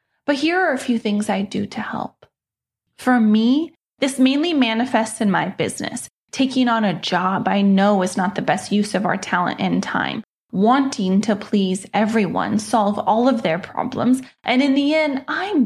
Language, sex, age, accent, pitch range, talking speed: English, female, 20-39, American, 205-260 Hz, 185 wpm